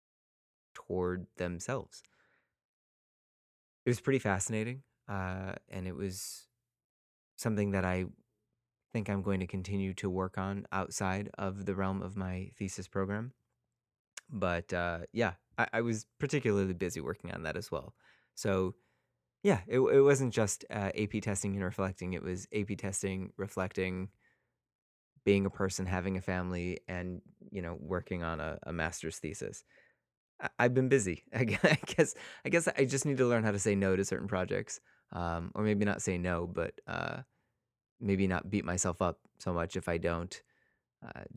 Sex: male